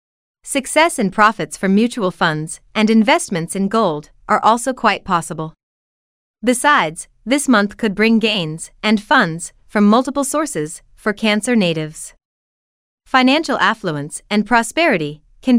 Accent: American